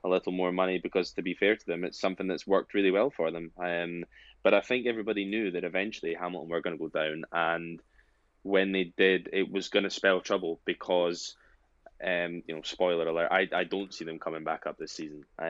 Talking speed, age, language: 225 wpm, 10-29, English